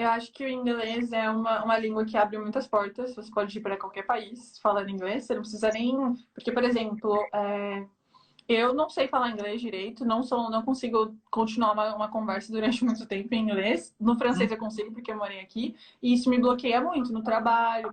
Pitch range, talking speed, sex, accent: 220-255 Hz, 215 wpm, female, Brazilian